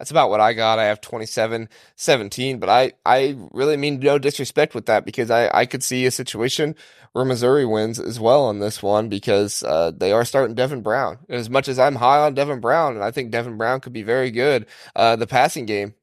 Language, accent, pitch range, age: English, American, 115-145 Hz, 20-39